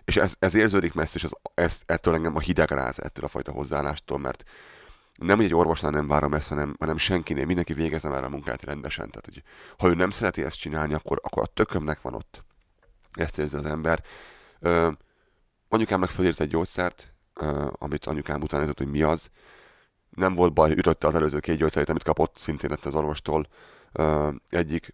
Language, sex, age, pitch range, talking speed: Hungarian, male, 30-49, 75-85 Hz, 185 wpm